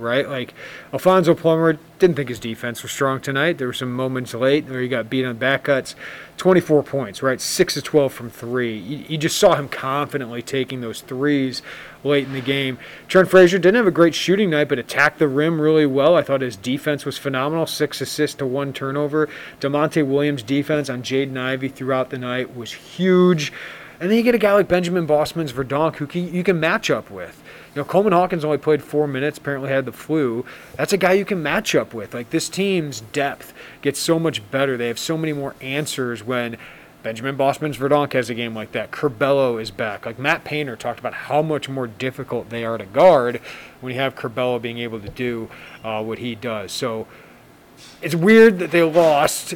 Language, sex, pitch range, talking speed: English, male, 130-160 Hz, 205 wpm